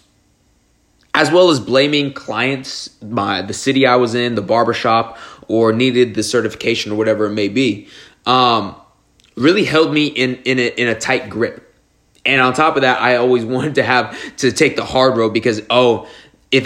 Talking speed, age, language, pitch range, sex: 185 wpm, 20-39, English, 110-130 Hz, male